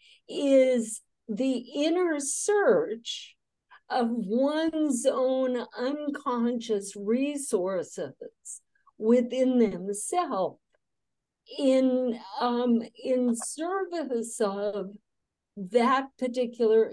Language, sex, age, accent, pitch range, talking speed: English, female, 60-79, American, 215-275 Hz, 65 wpm